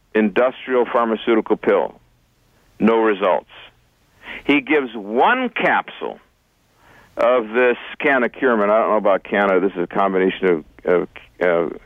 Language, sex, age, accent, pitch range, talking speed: English, male, 60-79, American, 125-195 Hz, 125 wpm